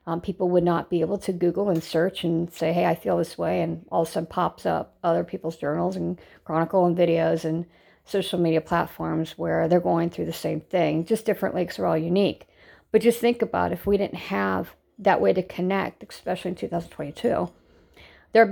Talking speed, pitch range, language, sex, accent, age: 205 wpm, 165-190 Hz, English, female, American, 50-69